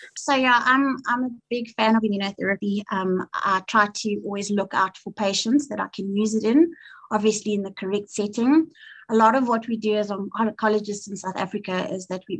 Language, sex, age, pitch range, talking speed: English, female, 30-49, 195-220 Hz, 210 wpm